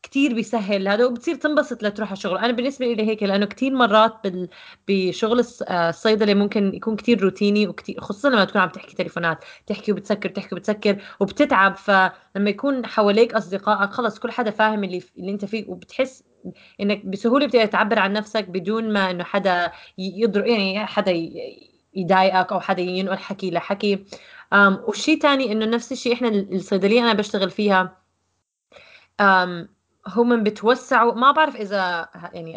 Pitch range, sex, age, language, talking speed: 185-225 Hz, female, 20-39, Arabic, 150 wpm